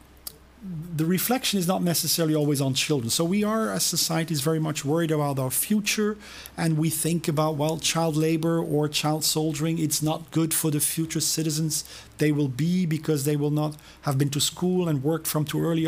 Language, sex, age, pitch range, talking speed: French, male, 40-59, 145-170 Hz, 195 wpm